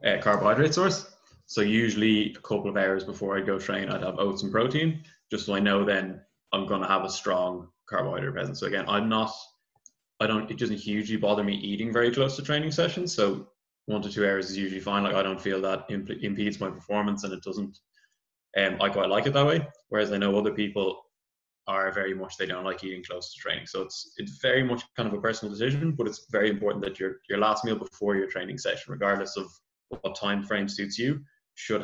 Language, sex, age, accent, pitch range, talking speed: English, male, 20-39, Irish, 95-110 Hz, 225 wpm